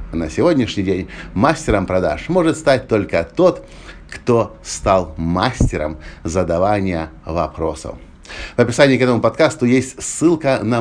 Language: Russian